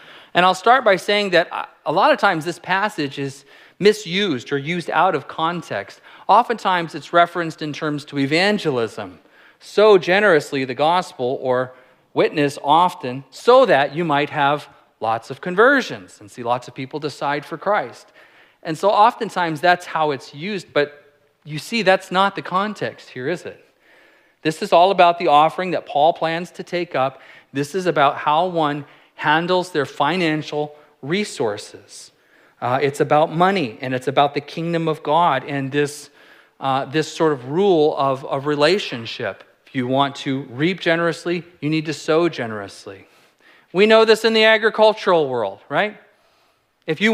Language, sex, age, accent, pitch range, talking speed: English, male, 40-59, American, 145-190 Hz, 165 wpm